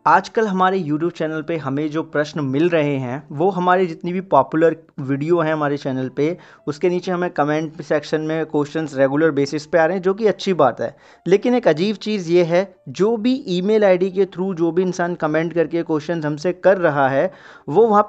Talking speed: 210 wpm